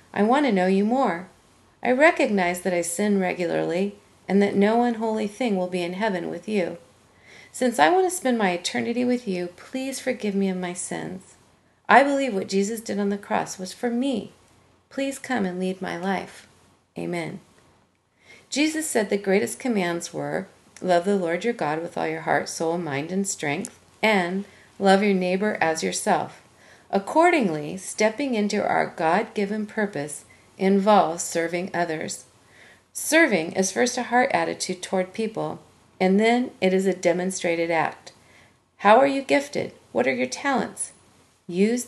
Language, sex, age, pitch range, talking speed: English, female, 40-59, 180-235 Hz, 165 wpm